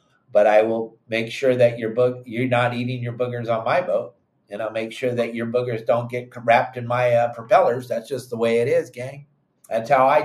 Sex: male